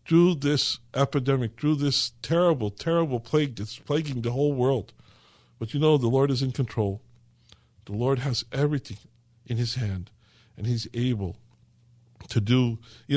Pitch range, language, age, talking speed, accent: 115-140 Hz, English, 60-79, 155 wpm, American